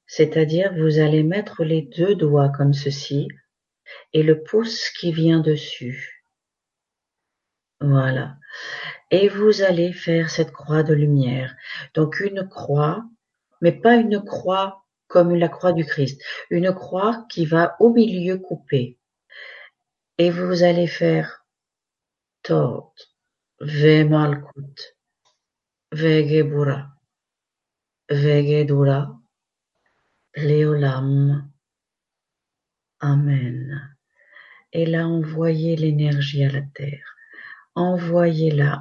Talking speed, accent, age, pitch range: 95 wpm, French, 50-69, 145-175 Hz